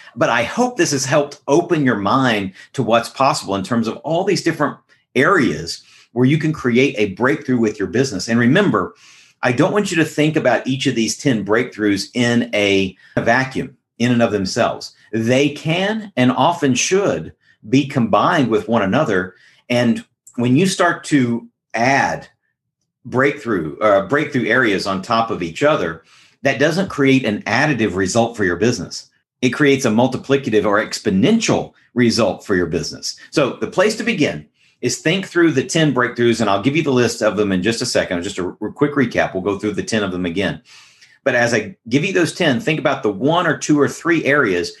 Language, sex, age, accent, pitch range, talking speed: English, male, 50-69, American, 110-145 Hz, 195 wpm